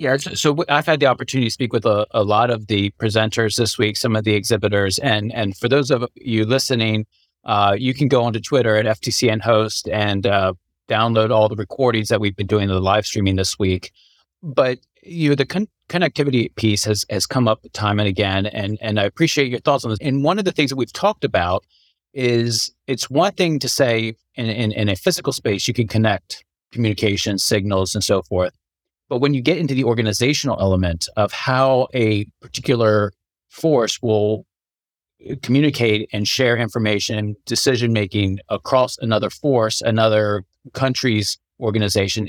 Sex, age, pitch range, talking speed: male, 40-59, 105-130 Hz, 180 wpm